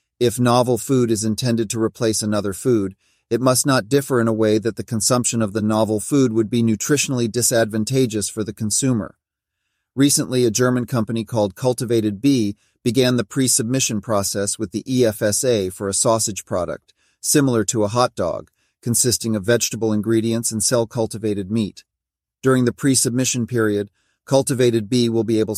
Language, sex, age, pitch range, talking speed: English, male, 40-59, 105-120 Hz, 170 wpm